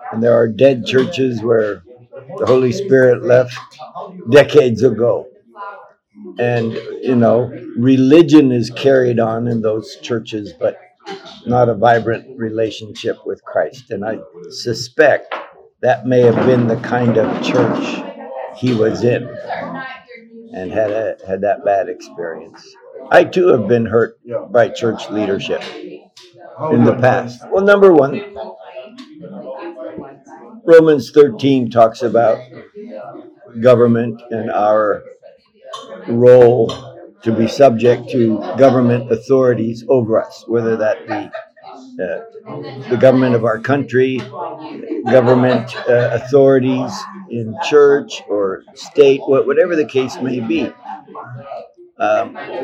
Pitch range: 115-165 Hz